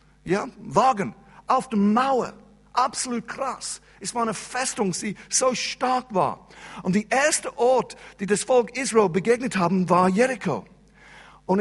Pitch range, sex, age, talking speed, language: 185-230 Hz, male, 50-69, 145 wpm, German